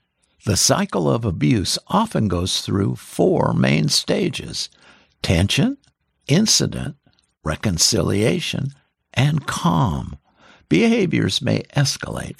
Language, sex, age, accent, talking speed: English, male, 60-79, American, 85 wpm